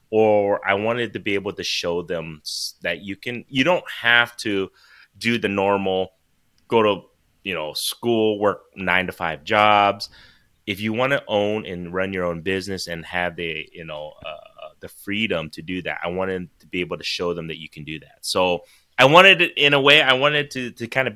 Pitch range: 85-110 Hz